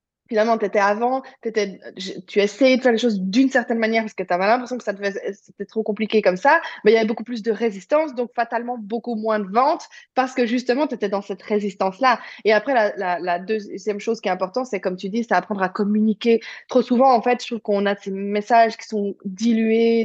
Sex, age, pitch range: female, 20-39, 200-255 Hz